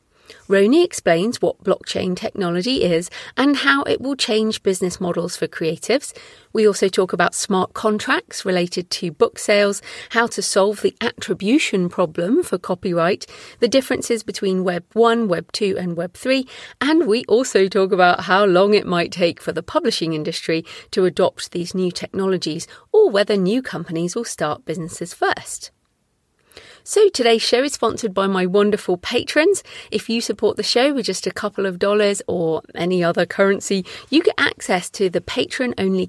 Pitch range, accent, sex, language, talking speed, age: 180-225 Hz, British, female, English, 165 wpm, 40-59